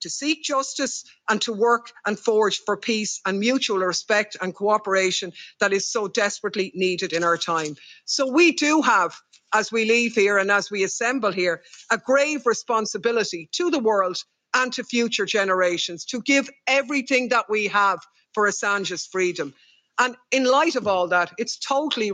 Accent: Irish